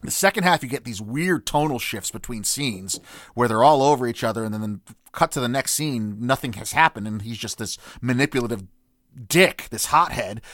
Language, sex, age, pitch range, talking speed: English, male, 30-49, 110-150 Hz, 205 wpm